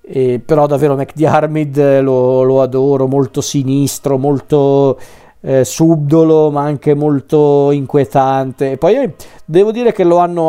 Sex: male